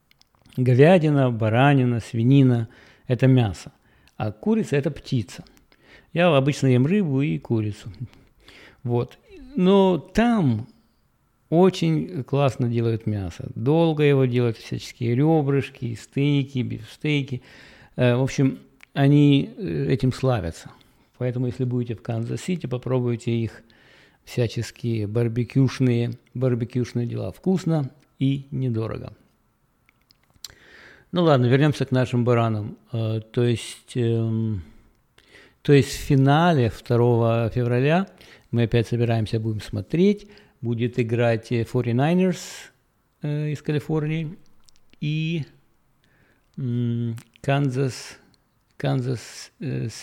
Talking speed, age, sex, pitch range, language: 90 wpm, 50-69, male, 120-145 Hz, English